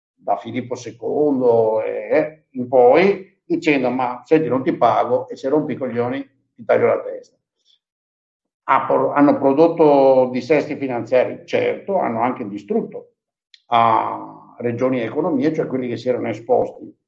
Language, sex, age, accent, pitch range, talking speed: Italian, male, 50-69, native, 120-165 Hz, 130 wpm